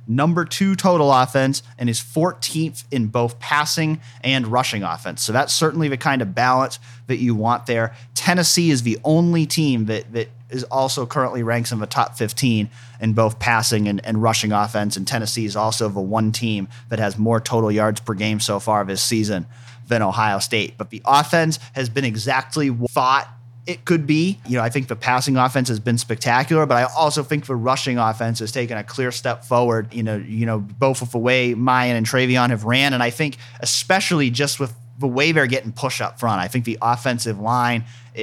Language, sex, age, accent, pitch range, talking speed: English, male, 30-49, American, 110-130 Hz, 205 wpm